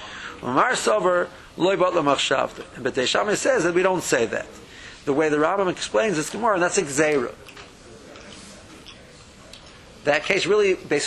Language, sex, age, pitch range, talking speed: English, male, 50-69, 155-195 Hz, 130 wpm